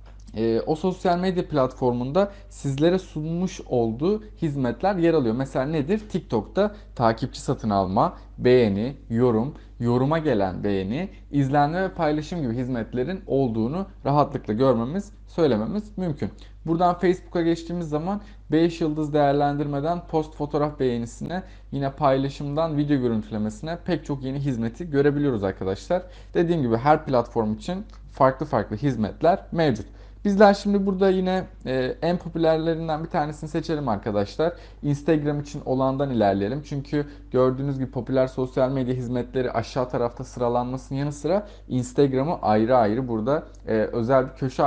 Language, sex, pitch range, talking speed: English, male, 115-165 Hz, 125 wpm